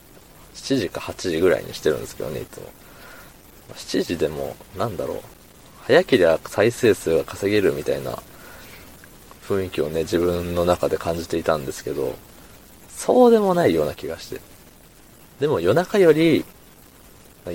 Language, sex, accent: Japanese, male, native